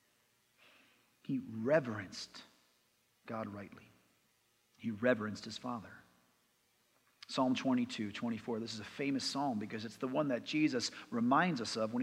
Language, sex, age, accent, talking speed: English, male, 40-59, American, 130 wpm